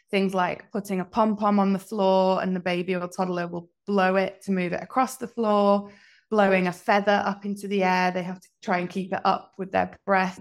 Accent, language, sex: British, English, female